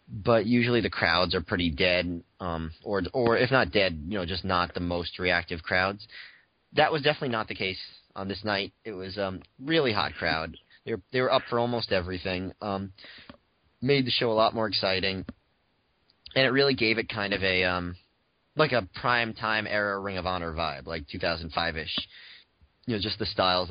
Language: English